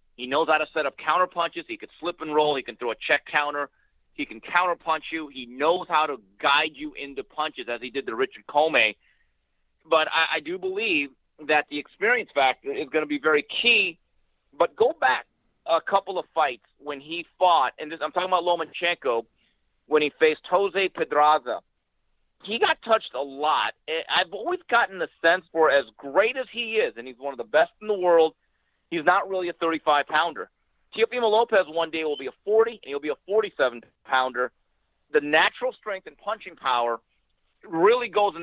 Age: 40-59